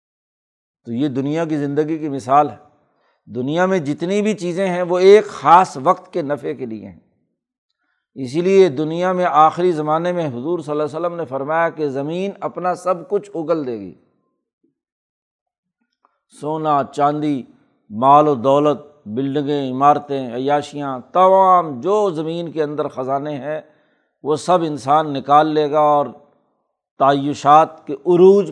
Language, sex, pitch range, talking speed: Urdu, male, 145-175 Hz, 145 wpm